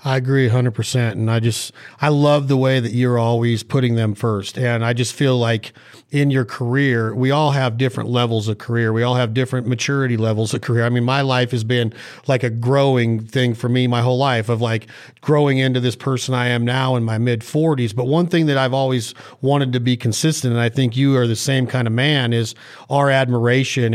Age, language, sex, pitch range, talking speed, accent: 40-59, English, male, 120-150 Hz, 225 wpm, American